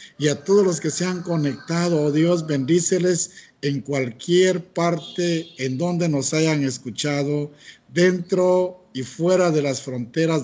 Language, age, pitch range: Spanish, 60-79, 145-180 Hz